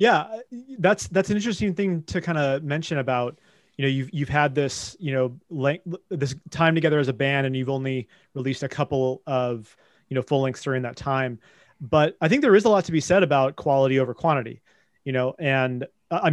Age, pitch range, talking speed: 30-49, 135-170 Hz, 215 wpm